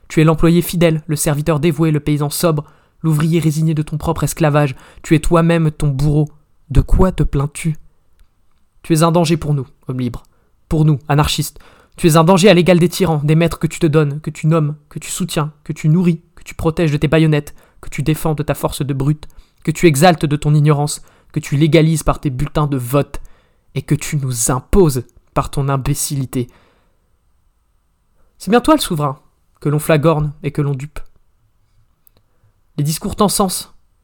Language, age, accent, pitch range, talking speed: French, 20-39, French, 140-165 Hz, 195 wpm